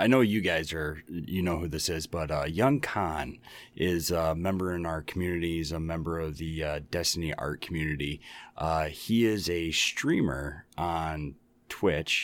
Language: English